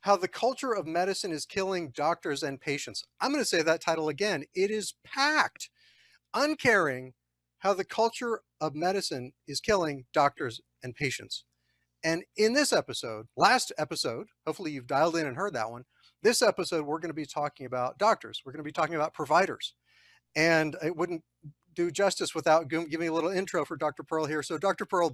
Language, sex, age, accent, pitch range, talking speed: English, male, 40-59, American, 140-200 Hz, 180 wpm